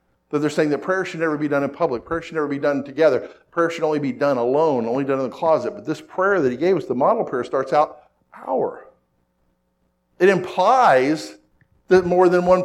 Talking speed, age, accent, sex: 225 wpm, 50-69, American, male